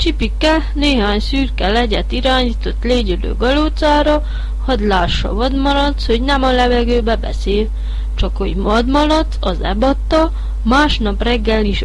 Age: 30-49